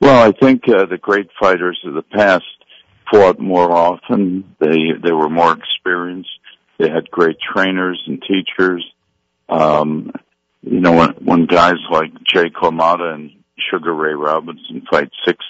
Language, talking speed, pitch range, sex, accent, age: English, 150 wpm, 80-95 Hz, male, American, 60-79